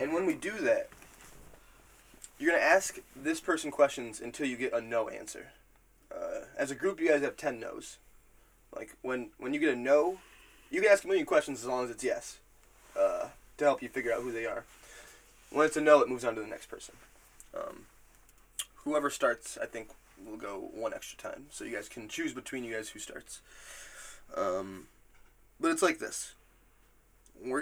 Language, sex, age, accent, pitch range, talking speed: English, male, 20-39, American, 115-180 Hz, 200 wpm